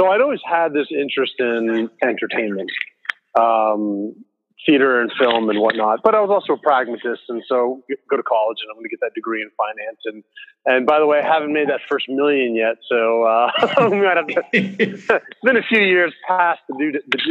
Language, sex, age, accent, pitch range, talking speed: English, male, 30-49, American, 120-165 Hz, 200 wpm